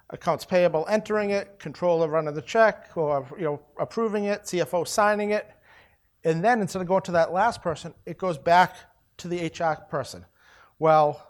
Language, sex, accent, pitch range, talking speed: English, male, American, 145-180 Hz, 175 wpm